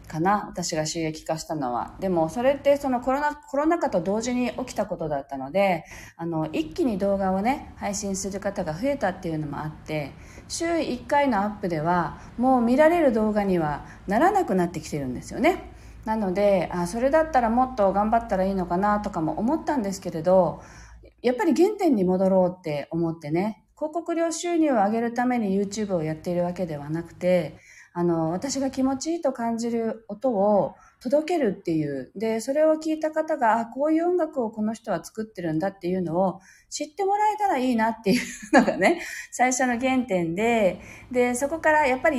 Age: 40-59